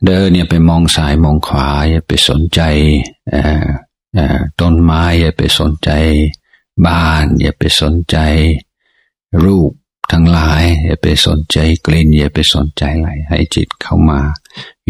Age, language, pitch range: 60-79, Thai, 80-90 Hz